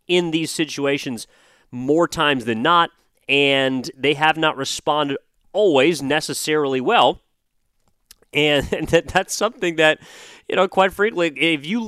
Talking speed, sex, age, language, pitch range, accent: 125 wpm, male, 30-49, English, 110-150 Hz, American